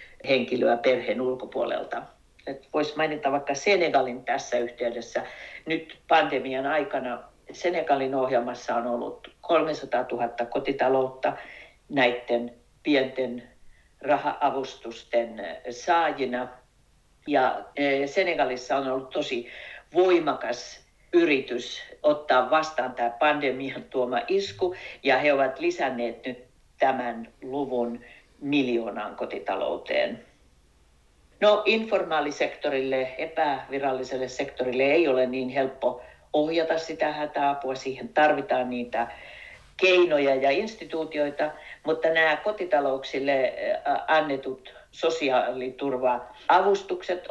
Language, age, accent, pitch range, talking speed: Finnish, 50-69, native, 125-160 Hz, 85 wpm